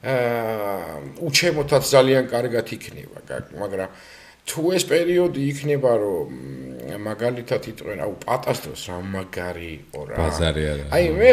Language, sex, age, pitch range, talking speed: English, male, 50-69, 105-165 Hz, 115 wpm